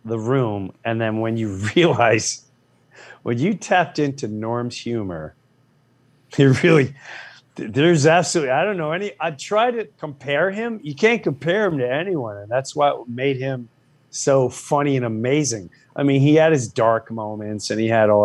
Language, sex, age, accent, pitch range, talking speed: English, male, 40-59, American, 115-155 Hz, 170 wpm